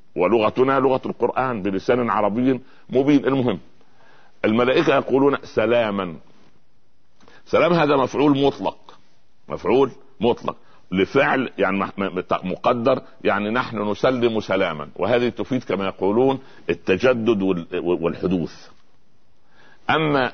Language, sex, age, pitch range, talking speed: Arabic, male, 60-79, 95-130 Hz, 90 wpm